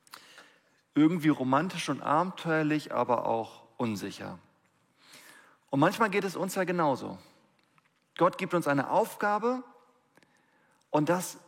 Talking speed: 110 wpm